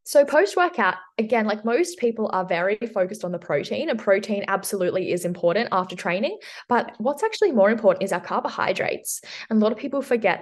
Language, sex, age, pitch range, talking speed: English, female, 10-29, 170-205 Hz, 190 wpm